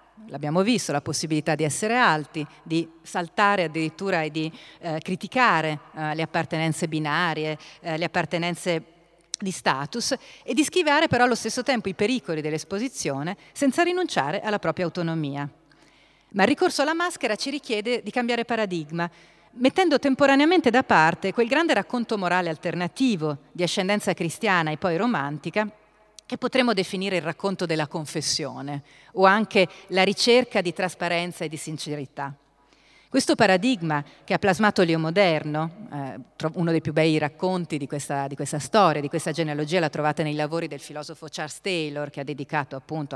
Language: Italian